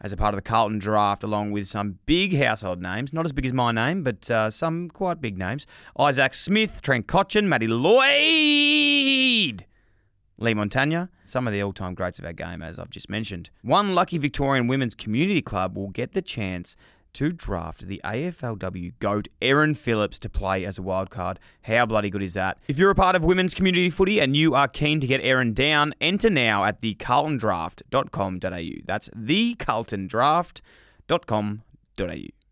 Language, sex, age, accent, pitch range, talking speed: English, male, 20-39, Australian, 100-150 Hz, 175 wpm